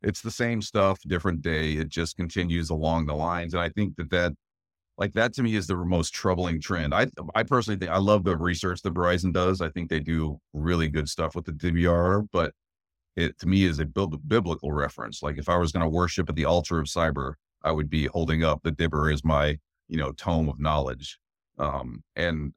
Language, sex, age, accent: English, male, 40-59, American